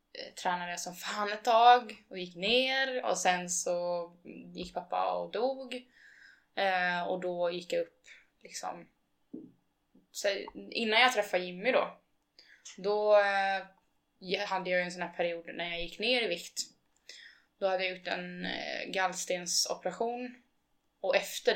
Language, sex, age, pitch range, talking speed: Swedish, female, 20-39, 175-205 Hz, 140 wpm